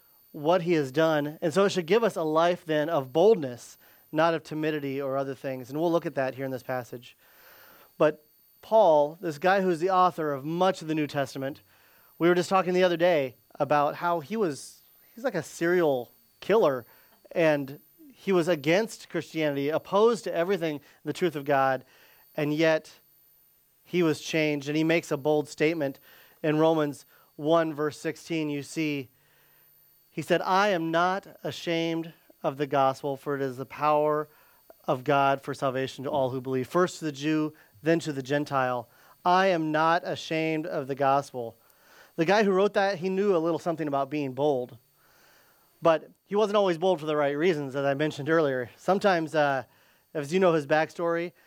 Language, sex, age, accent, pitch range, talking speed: English, male, 30-49, American, 145-175 Hz, 185 wpm